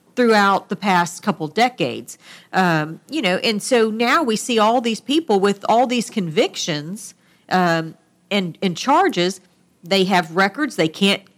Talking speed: 155 wpm